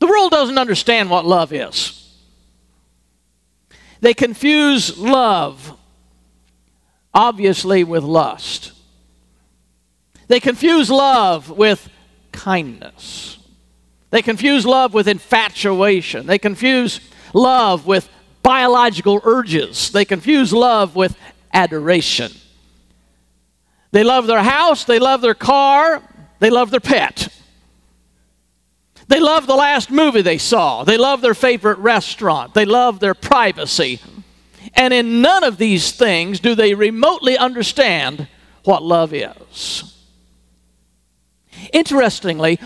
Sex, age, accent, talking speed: male, 50-69, American, 105 wpm